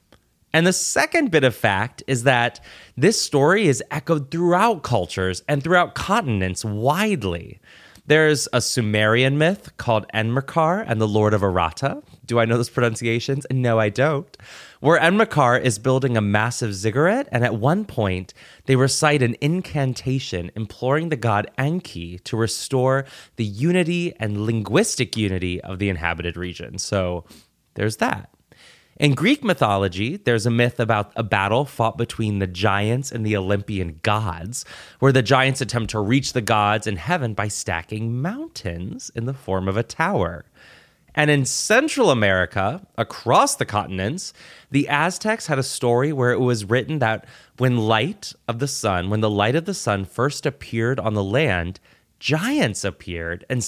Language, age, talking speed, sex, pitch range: English, 20-39, 160 wpm, male, 105-145 Hz